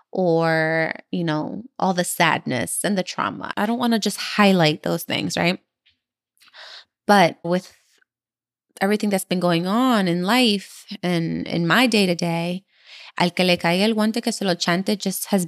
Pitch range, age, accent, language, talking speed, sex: 170-205 Hz, 20-39, American, English, 165 wpm, female